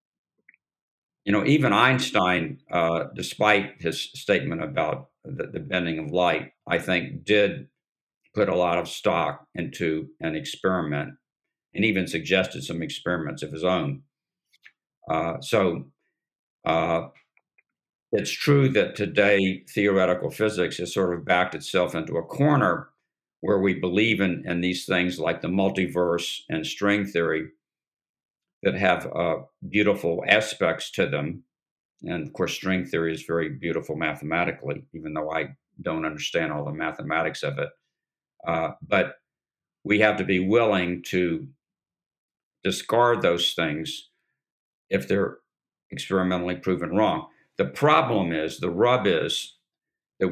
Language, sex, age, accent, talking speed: English, male, 60-79, American, 135 wpm